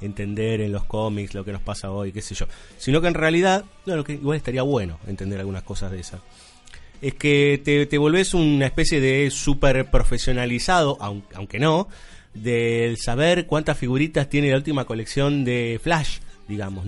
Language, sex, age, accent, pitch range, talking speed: Spanish, male, 30-49, Argentinian, 110-155 Hz, 175 wpm